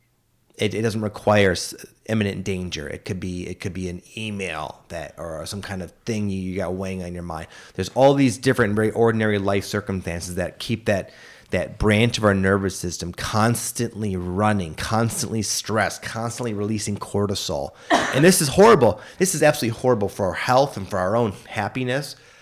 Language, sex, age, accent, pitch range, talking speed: English, male, 30-49, American, 95-115 Hz, 180 wpm